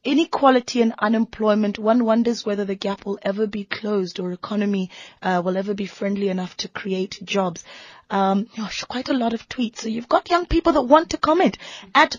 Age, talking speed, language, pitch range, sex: 20-39, 195 wpm, English, 205-250 Hz, female